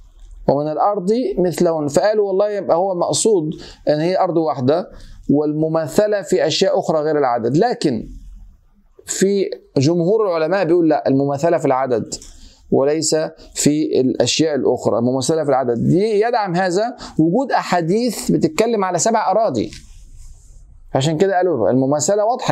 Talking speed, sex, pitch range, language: 125 wpm, male, 150-195 Hz, Arabic